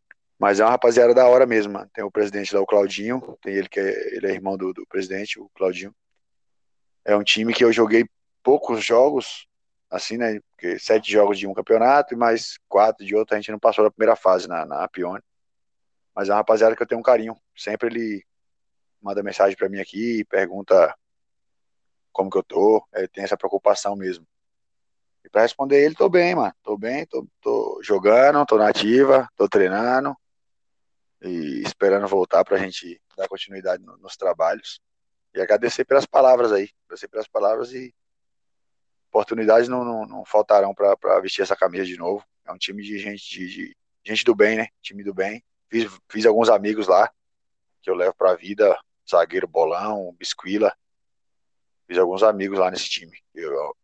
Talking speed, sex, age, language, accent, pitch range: 185 wpm, male, 20-39, Portuguese, Brazilian, 100-130 Hz